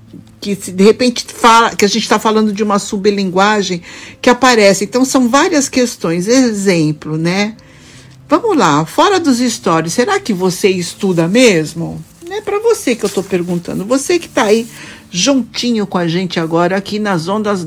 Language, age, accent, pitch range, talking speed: Portuguese, 60-79, Brazilian, 160-230 Hz, 170 wpm